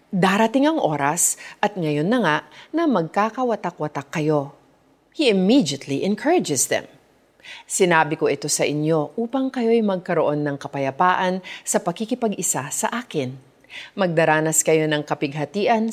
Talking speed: 120 wpm